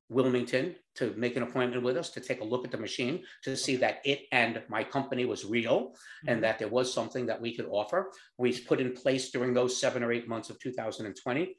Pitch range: 110-125 Hz